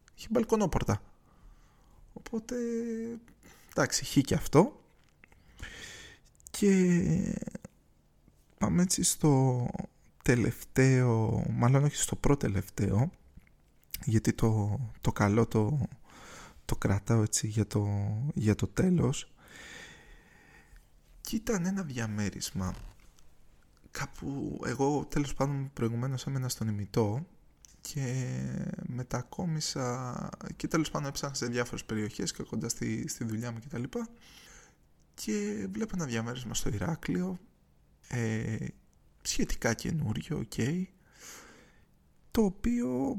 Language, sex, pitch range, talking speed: Greek, male, 110-175 Hz, 95 wpm